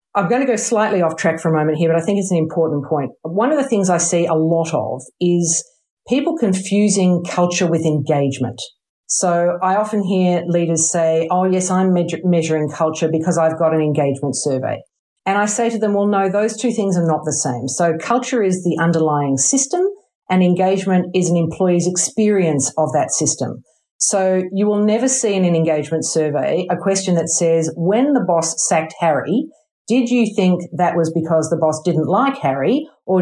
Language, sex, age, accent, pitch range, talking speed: English, female, 50-69, Australian, 155-195 Hz, 195 wpm